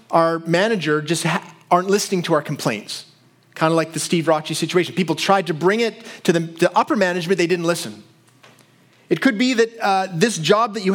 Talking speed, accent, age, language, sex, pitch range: 195 wpm, American, 30-49, English, male, 155-205 Hz